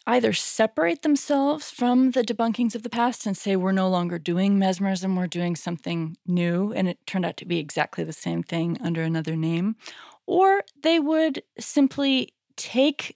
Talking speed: 175 wpm